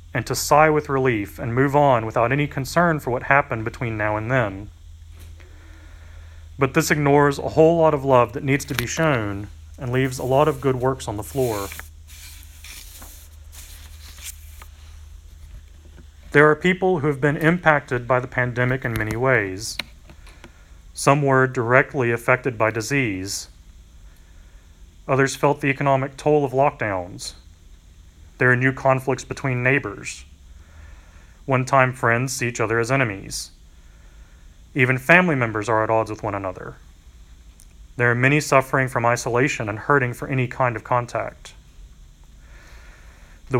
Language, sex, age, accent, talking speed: English, male, 40-59, American, 140 wpm